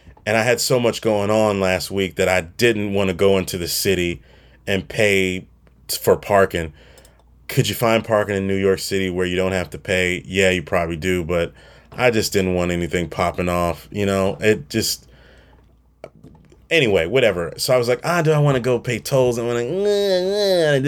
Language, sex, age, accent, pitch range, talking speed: English, male, 30-49, American, 90-130 Hz, 195 wpm